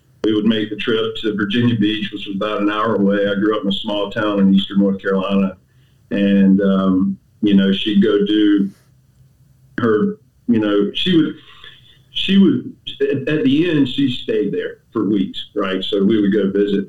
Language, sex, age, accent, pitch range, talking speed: English, male, 40-59, American, 95-125 Hz, 190 wpm